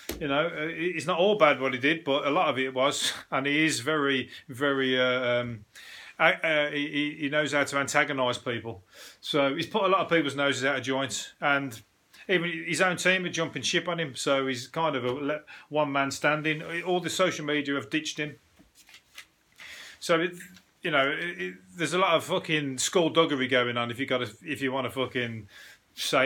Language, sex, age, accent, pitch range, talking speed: English, male, 30-49, British, 135-170 Hz, 210 wpm